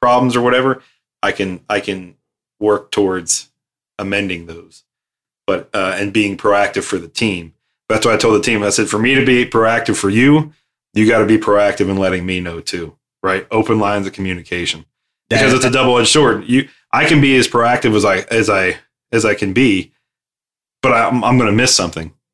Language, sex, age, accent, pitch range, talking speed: English, male, 30-49, American, 95-115 Hz, 200 wpm